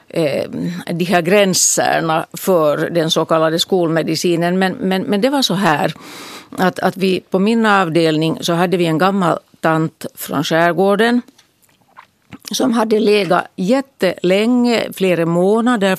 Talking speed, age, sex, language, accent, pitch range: 130 wpm, 50-69, female, Finnish, Swedish, 165-205 Hz